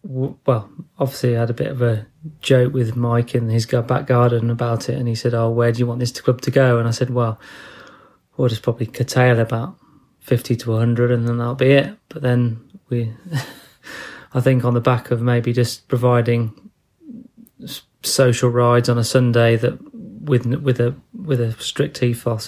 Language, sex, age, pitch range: English, male, 30-49, 120-130 Hz